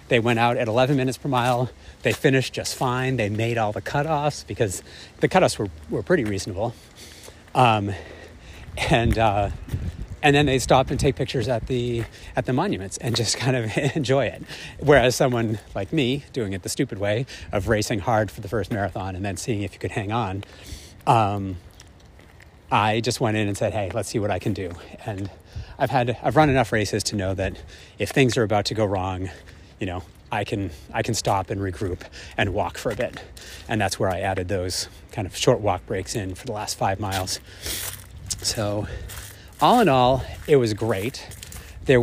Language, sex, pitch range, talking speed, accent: English, male, 95-130 Hz, 200 wpm, American